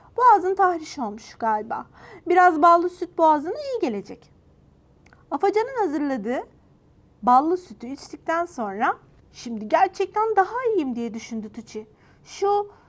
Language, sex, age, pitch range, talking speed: Turkish, female, 40-59, 255-365 Hz, 110 wpm